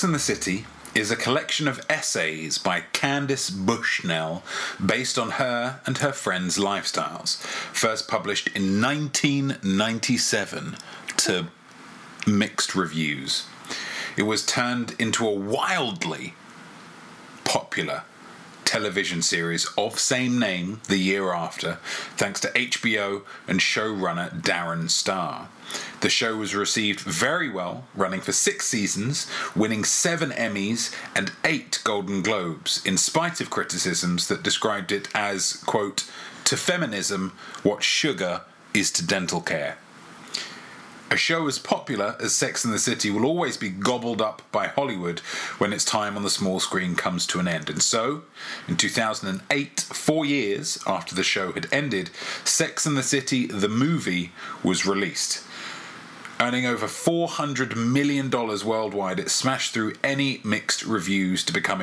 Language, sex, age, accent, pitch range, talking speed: English, male, 30-49, British, 100-135 Hz, 135 wpm